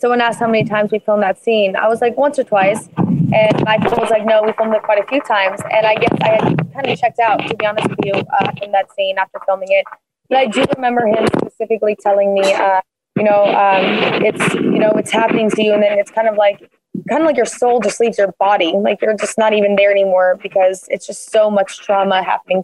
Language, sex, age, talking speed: English, female, 20-39, 255 wpm